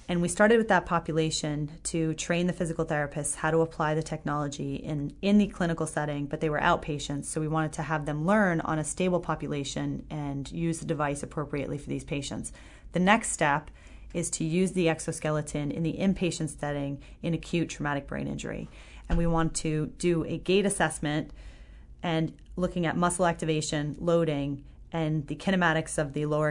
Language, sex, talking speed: English, female, 185 wpm